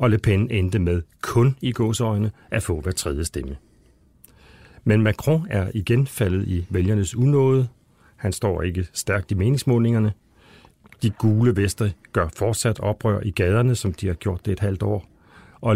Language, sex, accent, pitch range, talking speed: Danish, male, native, 95-115 Hz, 170 wpm